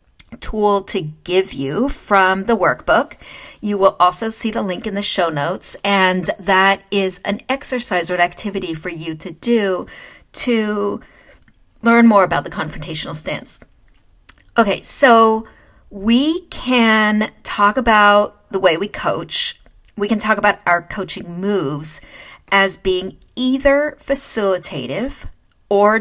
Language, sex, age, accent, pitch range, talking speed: English, female, 40-59, American, 185-235 Hz, 135 wpm